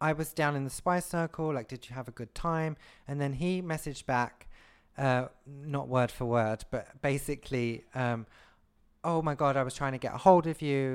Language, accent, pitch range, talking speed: English, British, 115-145 Hz, 215 wpm